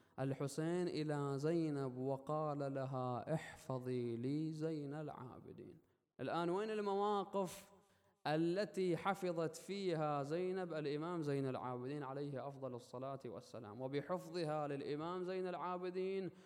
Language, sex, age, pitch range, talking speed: Arabic, male, 20-39, 135-175 Hz, 100 wpm